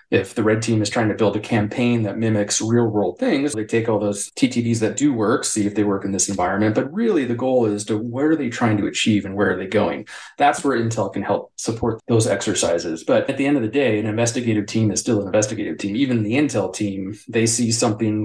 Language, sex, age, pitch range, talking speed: English, male, 30-49, 105-125 Hz, 255 wpm